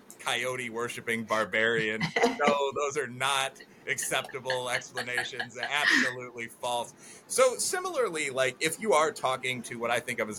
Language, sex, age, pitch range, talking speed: English, male, 30-49, 105-135 Hz, 140 wpm